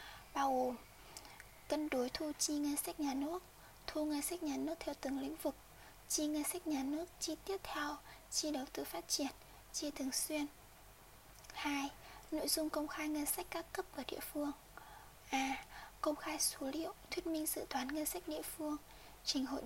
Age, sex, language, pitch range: 20-39, female, Vietnamese, 280-315 Hz